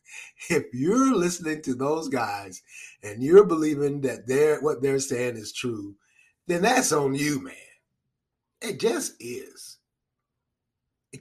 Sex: male